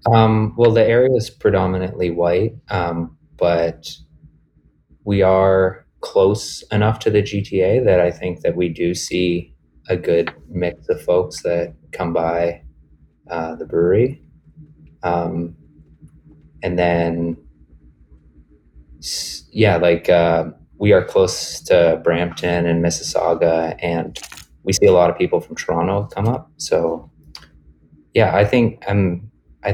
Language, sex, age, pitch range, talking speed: English, male, 20-39, 80-100 Hz, 130 wpm